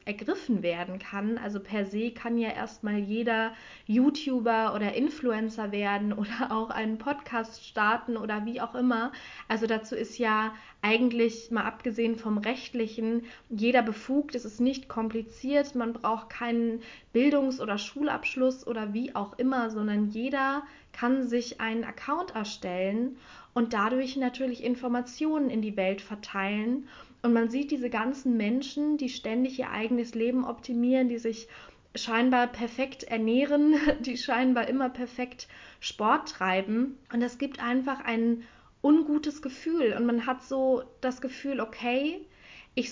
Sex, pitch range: female, 220-255 Hz